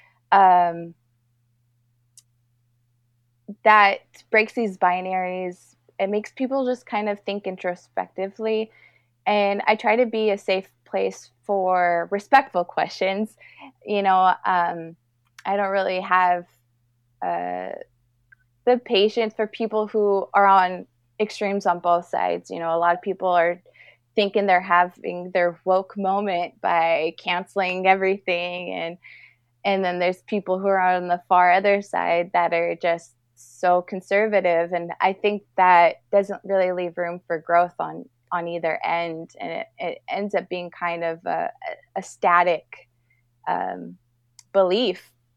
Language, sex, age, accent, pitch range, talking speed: English, female, 20-39, American, 165-195 Hz, 135 wpm